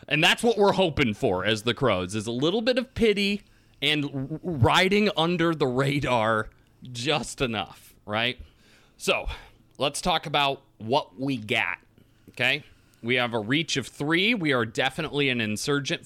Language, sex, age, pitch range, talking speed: English, male, 30-49, 110-155 Hz, 155 wpm